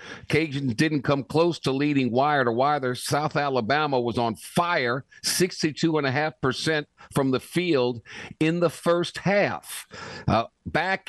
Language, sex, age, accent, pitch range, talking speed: English, male, 50-69, American, 115-150 Hz, 130 wpm